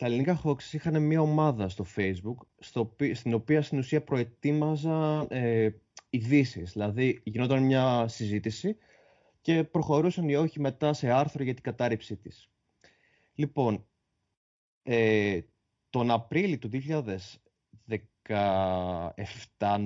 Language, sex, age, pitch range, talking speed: Greek, male, 30-49, 105-150 Hz, 105 wpm